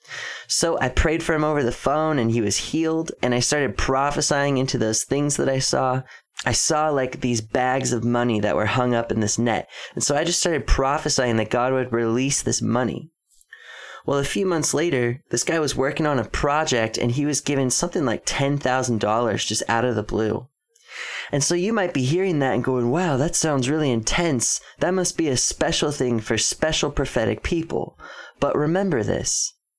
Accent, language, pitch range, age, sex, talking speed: American, English, 120-155 Hz, 20-39, male, 200 wpm